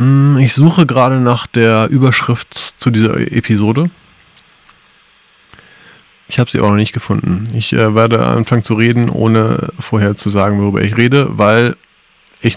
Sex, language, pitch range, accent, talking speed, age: male, German, 110-130 Hz, German, 150 wpm, 20-39